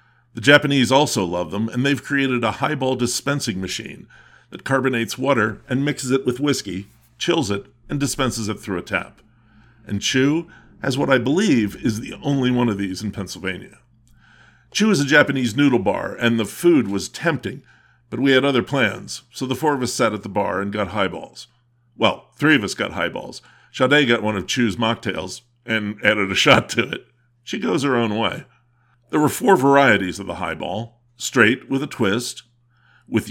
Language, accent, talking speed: English, American, 190 wpm